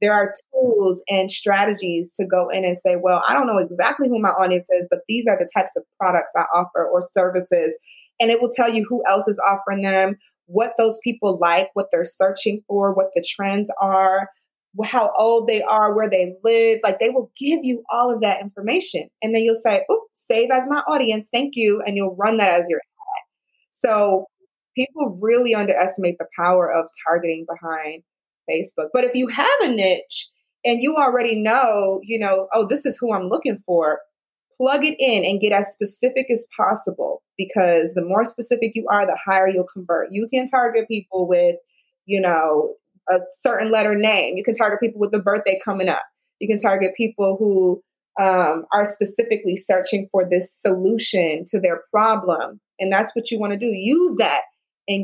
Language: English